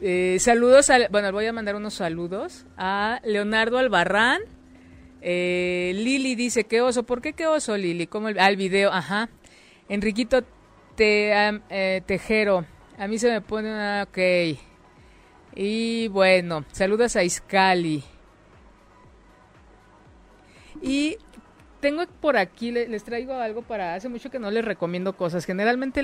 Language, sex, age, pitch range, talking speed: Spanish, female, 50-69, 185-230 Hz, 130 wpm